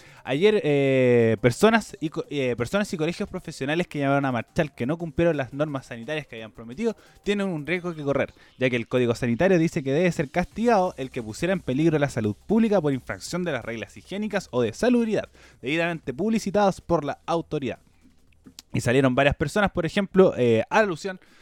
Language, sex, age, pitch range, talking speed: Spanish, male, 20-39, 125-180 Hz, 195 wpm